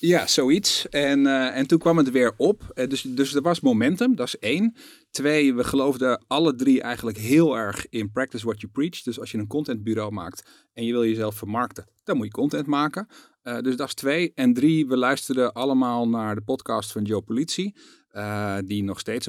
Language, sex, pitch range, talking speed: Dutch, male, 105-125 Hz, 210 wpm